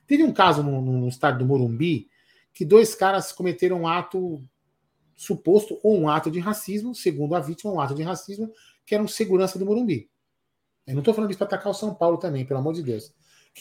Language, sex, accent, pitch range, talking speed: Portuguese, male, Brazilian, 150-210 Hz, 210 wpm